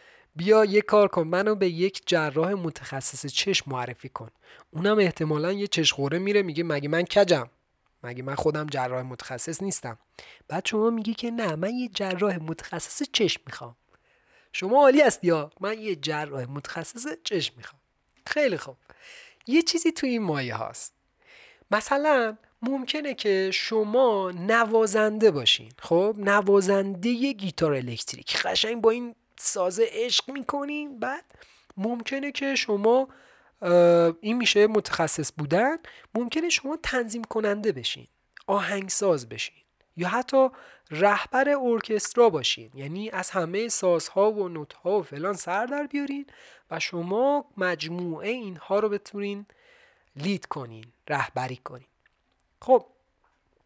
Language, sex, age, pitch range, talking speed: Persian, male, 30-49, 160-235 Hz, 130 wpm